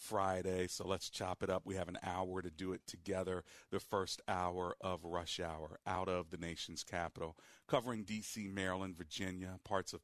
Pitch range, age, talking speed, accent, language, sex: 90-110 Hz, 40-59, 185 wpm, American, English, male